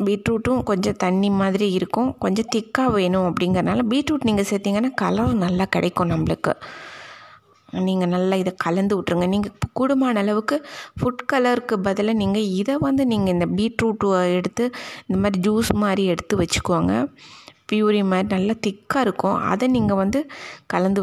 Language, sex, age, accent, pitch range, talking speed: Tamil, female, 20-39, native, 185-230 Hz, 140 wpm